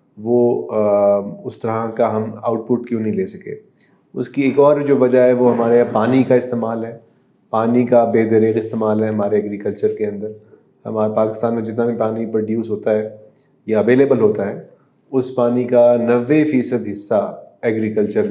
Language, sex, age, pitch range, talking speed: Urdu, male, 30-49, 105-120 Hz, 180 wpm